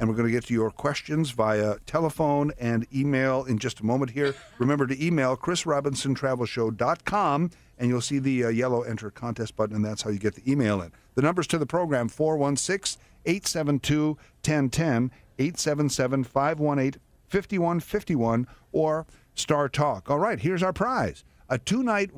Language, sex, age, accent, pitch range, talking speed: English, male, 50-69, American, 115-150 Hz, 145 wpm